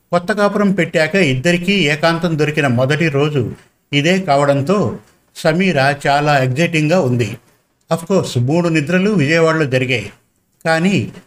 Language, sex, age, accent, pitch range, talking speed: Telugu, male, 50-69, native, 135-175 Hz, 105 wpm